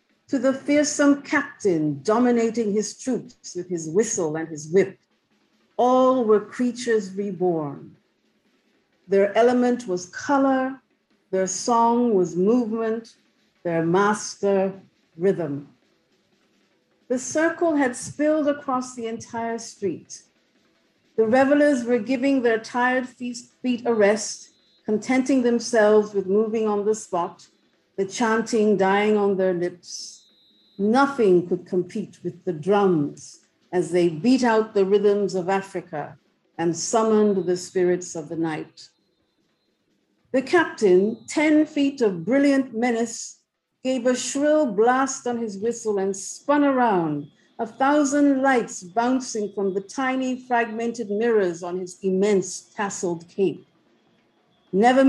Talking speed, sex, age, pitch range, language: 120 wpm, female, 50-69, 190-255 Hz, English